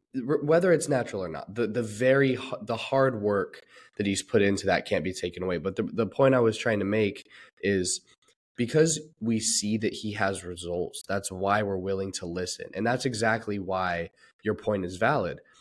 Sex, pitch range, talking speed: male, 100-120 Hz, 195 wpm